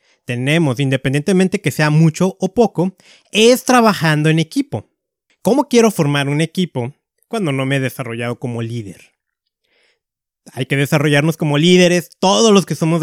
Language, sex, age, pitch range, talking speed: Spanish, male, 30-49, 140-180 Hz, 145 wpm